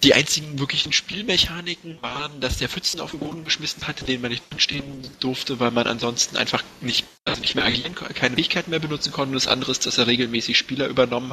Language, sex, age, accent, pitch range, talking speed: German, male, 20-39, German, 125-150 Hz, 220 wpm